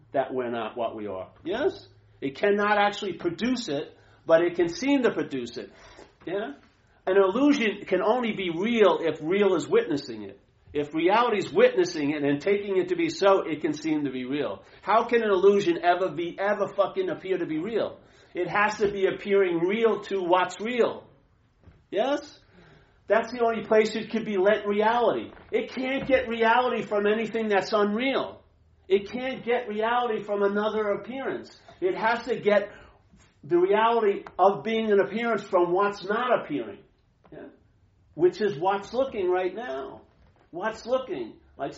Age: 50-69